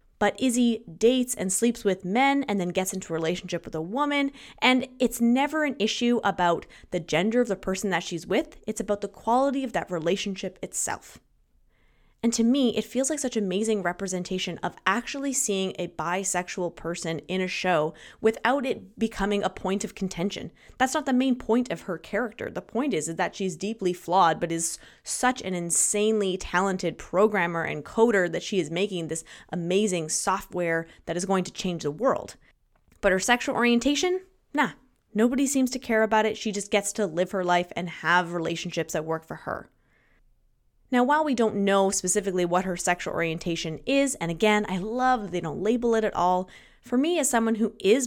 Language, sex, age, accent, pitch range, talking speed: English, female, 20-39, American, 180-235 Hz, 195 wpm